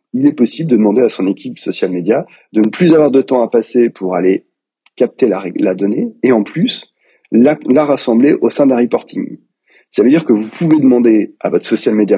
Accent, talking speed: French, 220 wpm